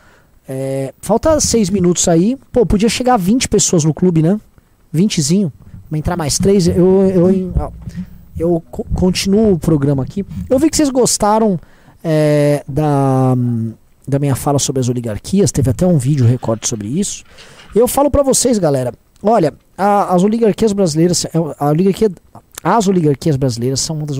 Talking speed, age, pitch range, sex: 160 wpm, 20-39, 130-190 Hz, male